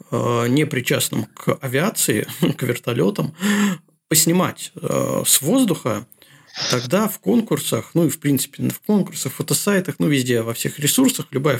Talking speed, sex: 135 wpm, male